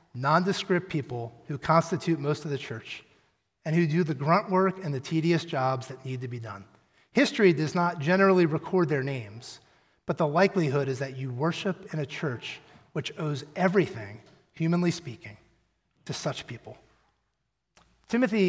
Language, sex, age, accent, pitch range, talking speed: English, male, 30-49, American, 155-195 Hz, 160 wpm